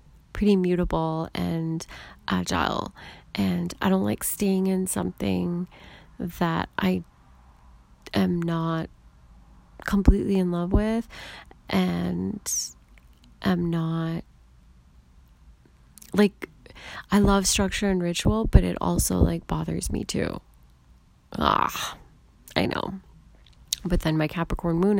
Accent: American